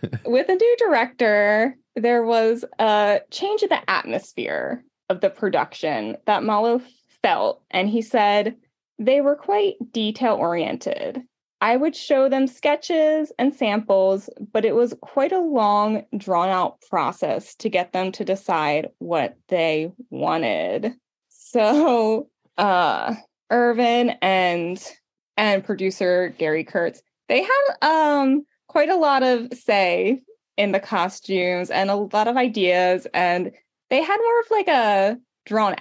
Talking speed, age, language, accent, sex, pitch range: 130 wpm, 20-39, English, American, female, 195-265 Hz